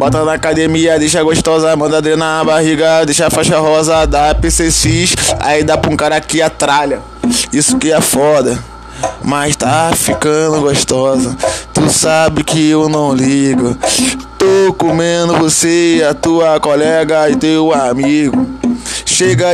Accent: Brazilian